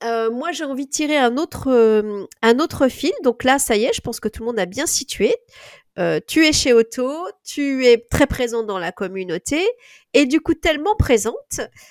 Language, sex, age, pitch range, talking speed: French, female, 30-49, 220-285 Hz, 215 wpm